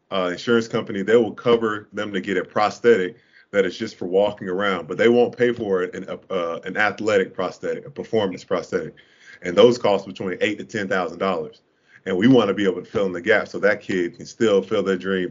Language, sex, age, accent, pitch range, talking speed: English, male, 20-39, American, 100-120 Hz, 235 wpm